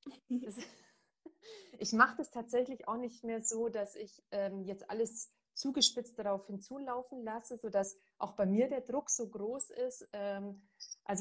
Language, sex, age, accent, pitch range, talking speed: German, female, 30-49, German, 190-230 Hz, 140 wpm